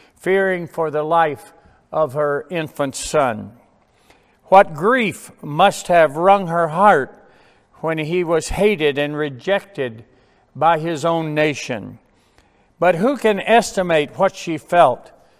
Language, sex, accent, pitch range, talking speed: English, male, American, 150-195 Hz, 125 wpm